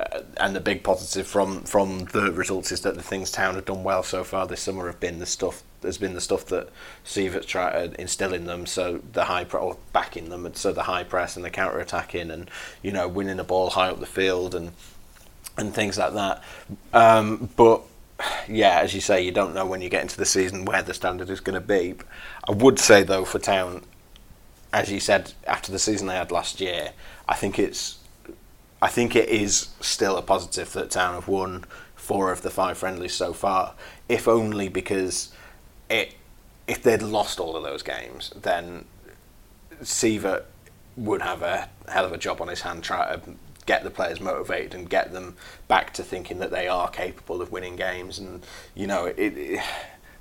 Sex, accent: male, British